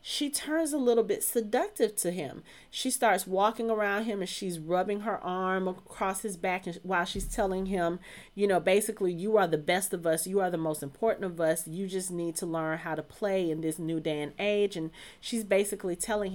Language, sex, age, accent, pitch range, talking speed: English, female, 30-49, American, 170-215 Hz, 215 wpm